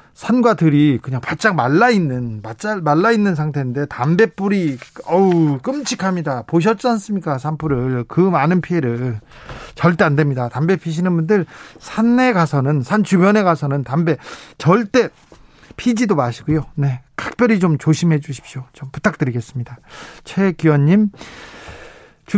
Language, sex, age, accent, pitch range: Korean, male, 40-59, native, 140-180 Hz